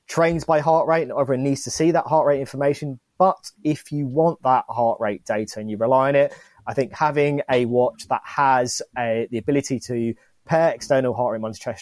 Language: English